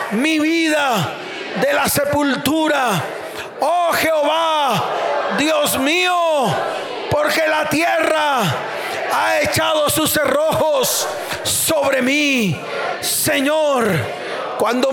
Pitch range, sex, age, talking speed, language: 245-310 Hz, male, 40-59, 80 wpm, Spanish